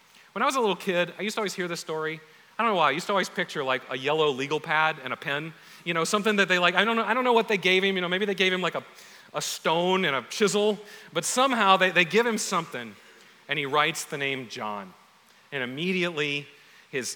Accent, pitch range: American, 140-195 Hz